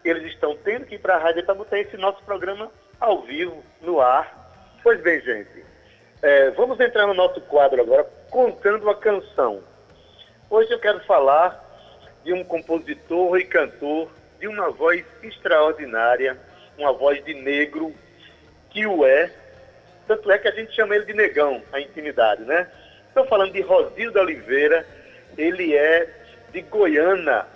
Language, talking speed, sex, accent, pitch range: Portuguese, 155 wpm, male, Brazilian, 160-260 Hz